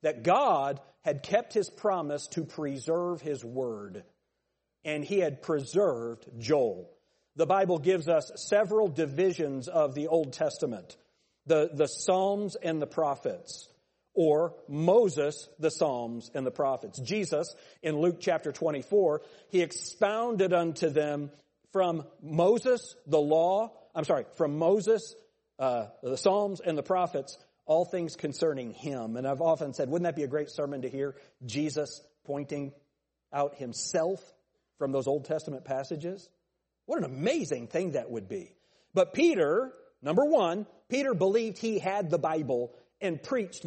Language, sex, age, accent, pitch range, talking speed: English, male, 50-69, American, 145-205 Hz, 145 wpm